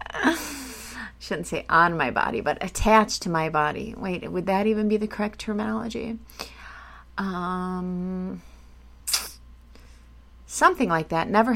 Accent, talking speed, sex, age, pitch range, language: American, 125 wpm, female, 30-49, 165-225 Hz, English